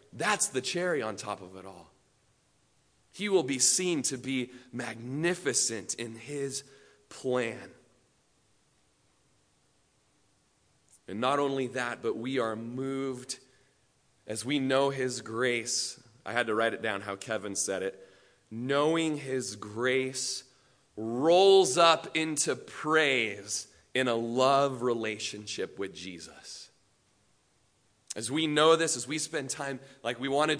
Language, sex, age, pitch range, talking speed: English, male, 30-49, 125-190 Hz, 125 wpm